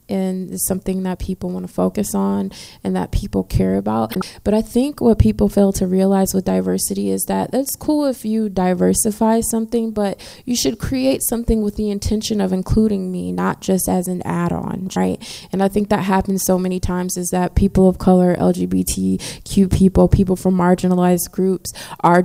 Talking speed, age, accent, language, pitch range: 185 wpm, 20-39, American, English, 175-200 Hz